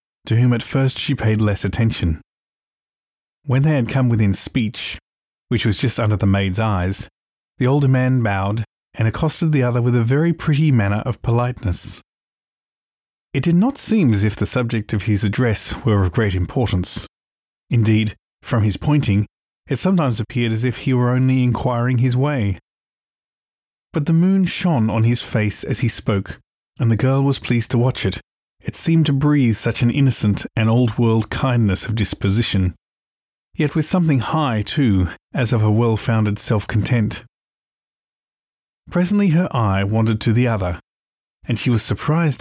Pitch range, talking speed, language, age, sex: 105-130 Hz, 165 wpm, English, 30-49, male